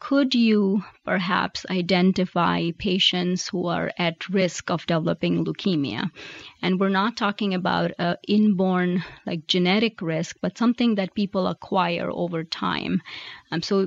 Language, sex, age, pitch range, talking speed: English, female, 30-49, 180-205 Hz, 135 wpm